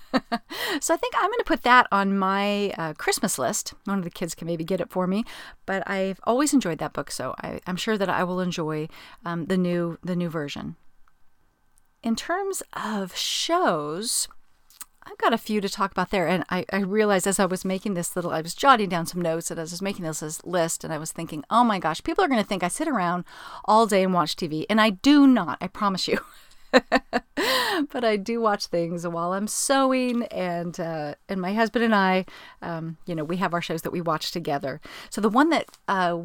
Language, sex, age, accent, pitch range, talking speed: English, female, 40-59, American, 170-215 Hz, 225 wpm